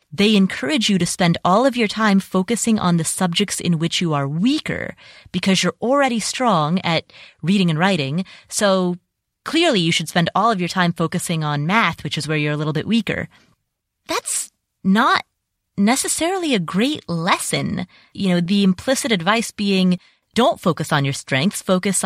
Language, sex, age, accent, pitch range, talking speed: English, female, 30-49, American, 175-255 Hz, 175 wpm